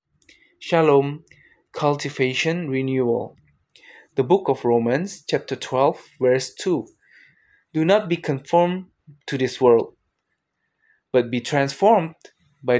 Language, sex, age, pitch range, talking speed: Indonesian, male, 20-39, 125-165 Hz, 105 wpm